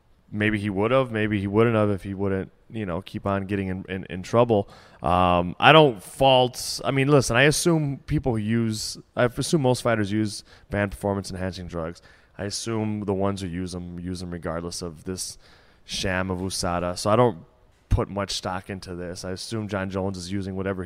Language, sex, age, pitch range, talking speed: English, male, 20-39, 90-110 Hz, 205 wpm